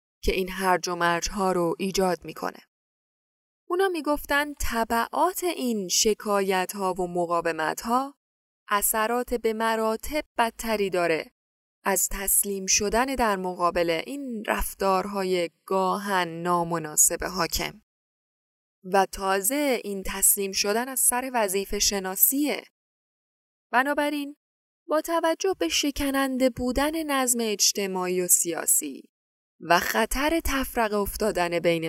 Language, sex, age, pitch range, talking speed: Persian, female, 10-29, 180-265 Hz, 105 wpm